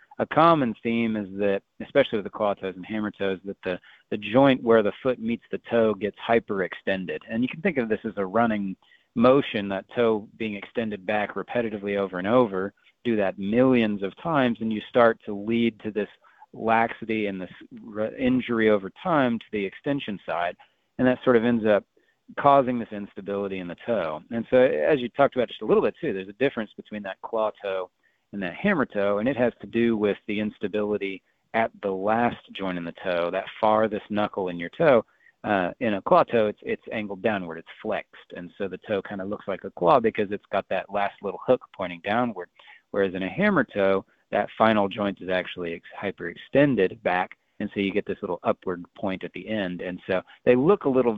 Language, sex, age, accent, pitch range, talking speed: English, male, 40-59, American, 100-115 Hz, 210 wpm